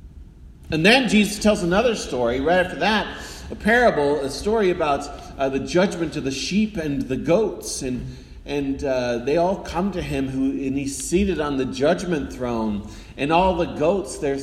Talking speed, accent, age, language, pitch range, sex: 185 wpm, American, 40-59, English, 105-160 Hz, male